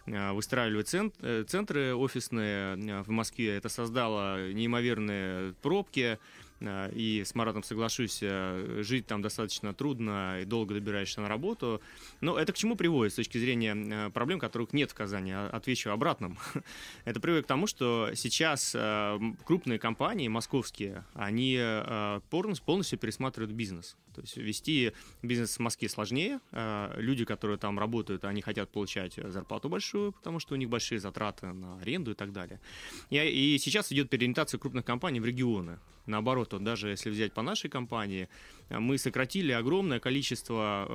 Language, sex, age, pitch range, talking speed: Russian, male, 20-39, 105-125 Hz, 140 wpm